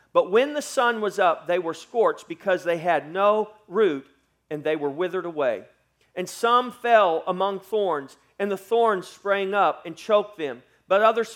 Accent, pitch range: American, 160-215 Hz